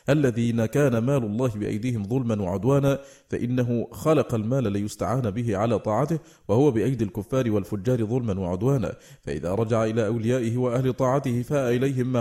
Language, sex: Arabic, male